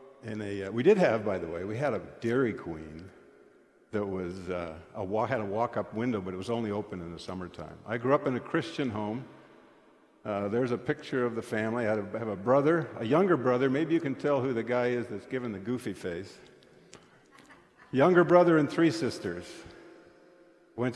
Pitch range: 100-130 Hz